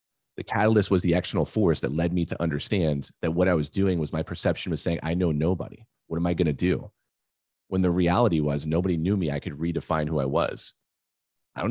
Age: 30-49